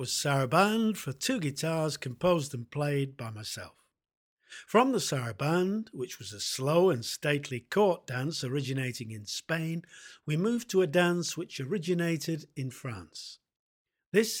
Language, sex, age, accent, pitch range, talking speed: English, male, 50-69, British, 135-185 Hz, 140 wpm